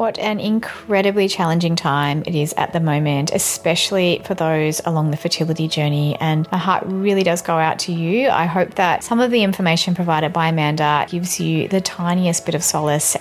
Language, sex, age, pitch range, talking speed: English, female, 30-49, 155-195 Hz, 195 wpm